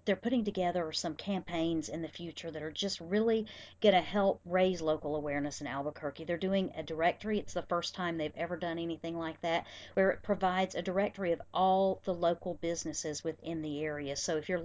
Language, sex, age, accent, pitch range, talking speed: English, female, 40-59, American, 160-200 Hz, 205 wpm